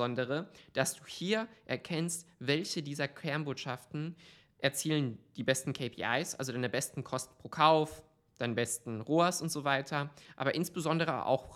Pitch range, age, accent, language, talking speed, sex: 130-155 Hz, 20-39, German, German, 135 wpm, male